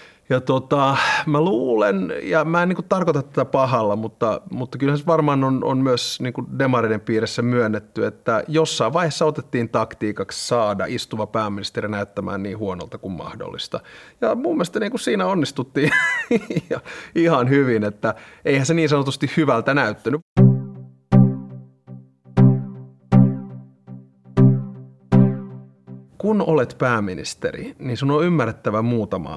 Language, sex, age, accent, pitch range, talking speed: Finnish, male, 30-49, native, 100-155 Hz, 125 wpm